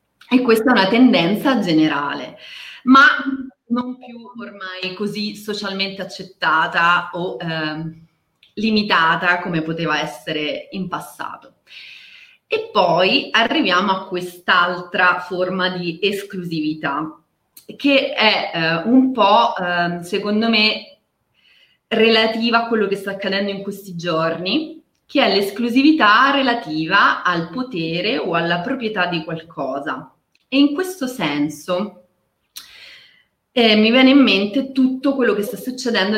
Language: Italian